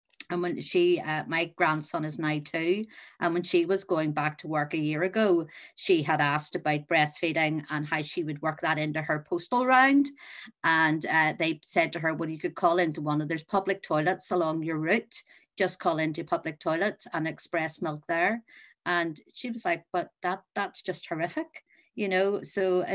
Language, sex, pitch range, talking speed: English, female, 160-185 Hz, 200 wpm